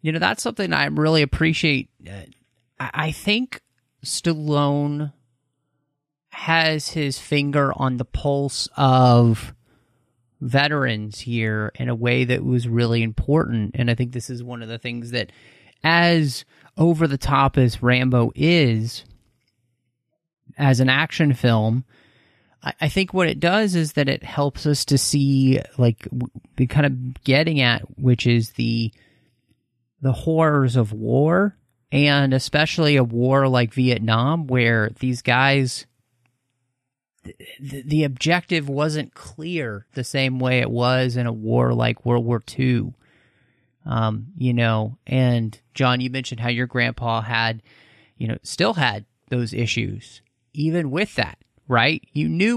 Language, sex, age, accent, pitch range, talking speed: English, male, 30-49, American, 120-145 Hz, 140 wpm